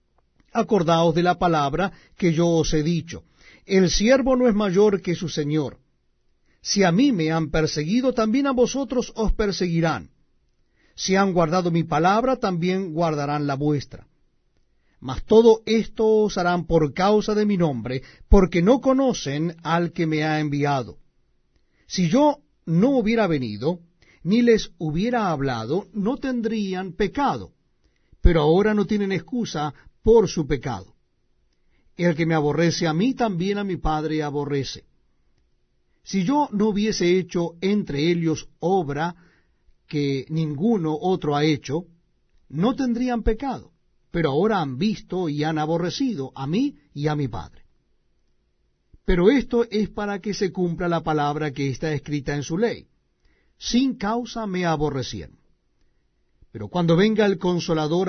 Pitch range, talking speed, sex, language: 150-210 Hz, 145 wpm, male, Spanish